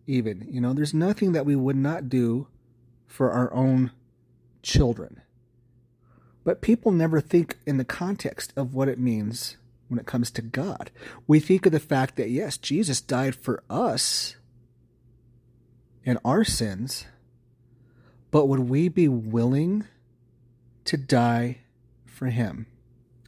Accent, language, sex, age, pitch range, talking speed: American, English, male, 30-49, 120-135 Hz, 135 wpm